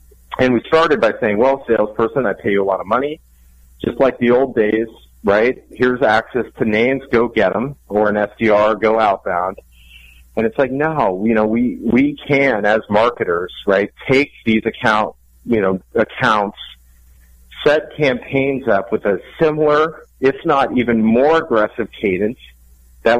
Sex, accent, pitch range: male, American, 100-125 Hz